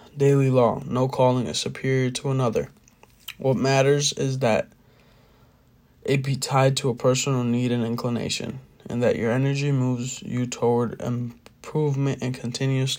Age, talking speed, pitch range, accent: 20-39, 145 wpm, 120-135 Hz, American